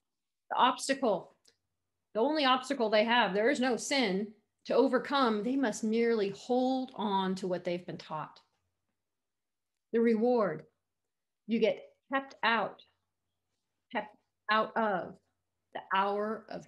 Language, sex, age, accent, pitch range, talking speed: English, female, 40-59, American, 185-230 Hz, 125 wpm